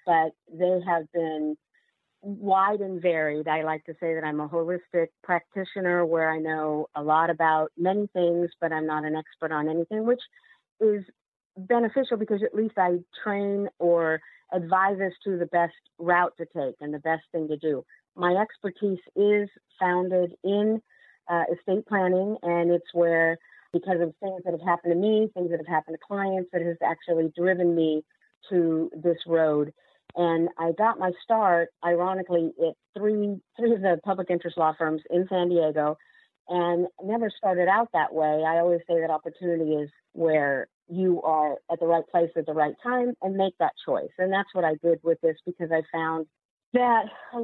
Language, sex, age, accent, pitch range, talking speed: English, female, 50-69, American, 165-195 Hz, 180 wpm